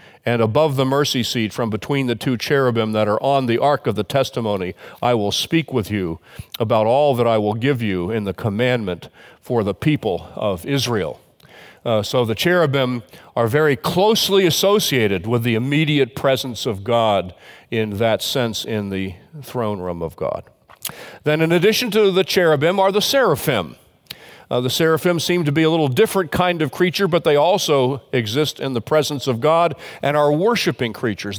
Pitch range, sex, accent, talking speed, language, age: 120-155 Hz, male, American, 180 wpm, English, 50-69